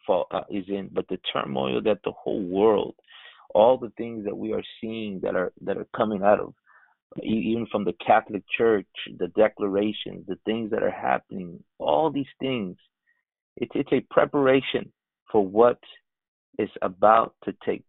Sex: male